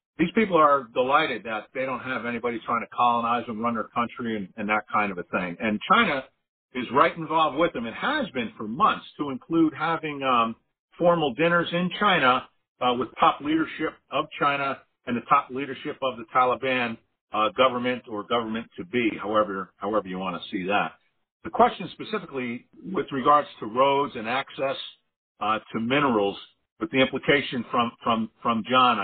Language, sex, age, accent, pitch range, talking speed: English, male, 50-69, American, 110-145 Hz, 180 wpm